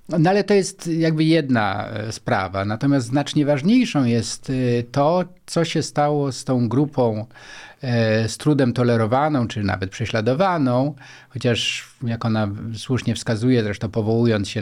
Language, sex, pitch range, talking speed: Polish, male, 115-145 Hz, 130 wpm